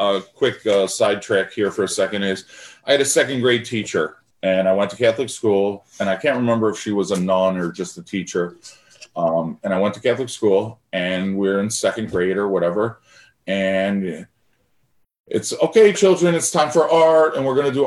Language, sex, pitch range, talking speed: English, male, 95-130 Hz, 205 wpm